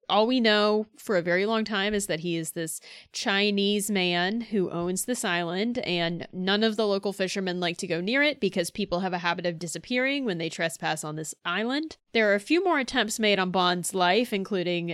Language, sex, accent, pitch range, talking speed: English, female, American, 185-230 Hz, 215 wpm